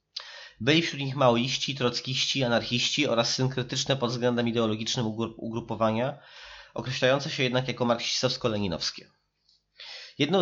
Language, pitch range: Polish, 110-135 Hz